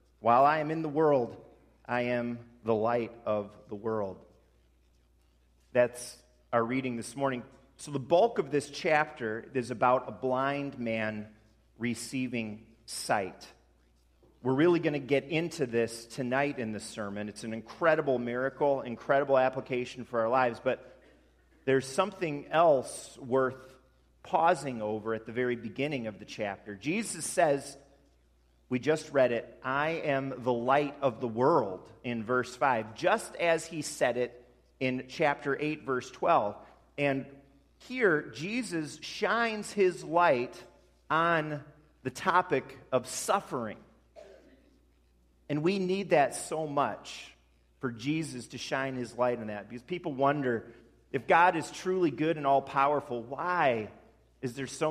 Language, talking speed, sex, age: English, 140 wpm, male, 40-59